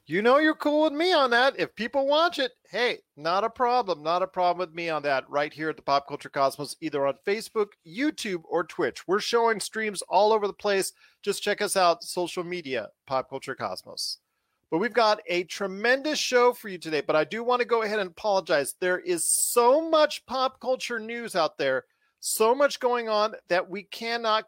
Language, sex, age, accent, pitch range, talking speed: English, male, 40-59, American, 155-220 Hz, 210 wpm